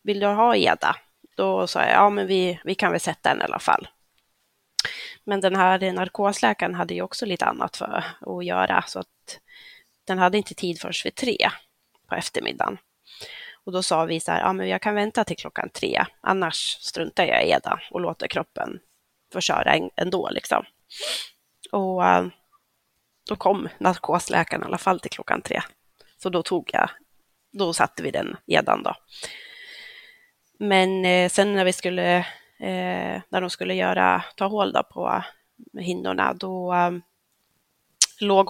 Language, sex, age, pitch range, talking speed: Swedish, female, 20-39, 170-200 Hz, 160 wpm